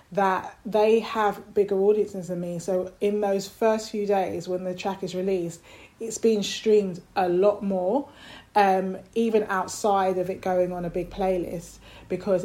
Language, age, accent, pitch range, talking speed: English, 20-39, British, 175-195 Hz, 170 wpm